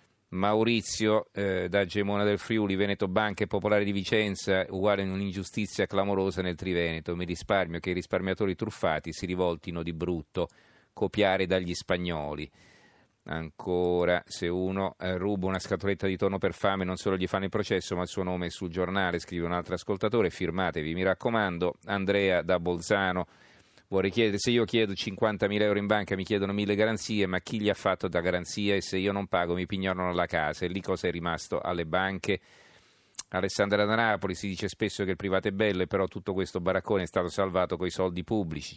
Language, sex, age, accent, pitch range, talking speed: Italian, male, 40-59, native, 85-100 Hz, 185 wpm